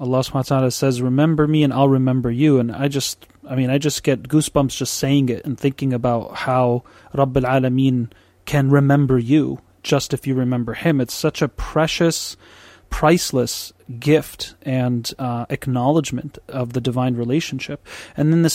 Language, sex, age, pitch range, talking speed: English, male, 30-49, 130-150 Hz, 160 wpm